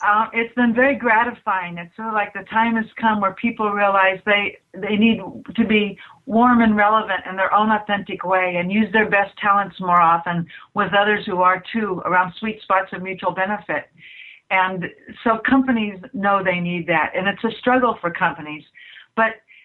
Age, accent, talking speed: 60-79, American, 185 wpm